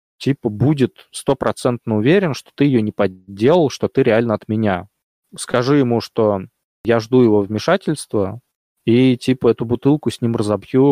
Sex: male